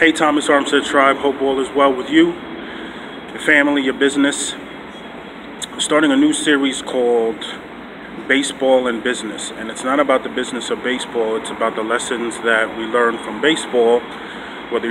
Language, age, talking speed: English, 30-49, 165 wpm